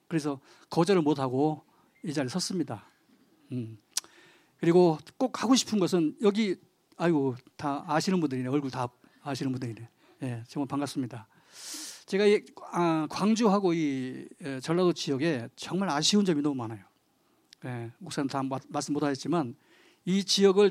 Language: Korean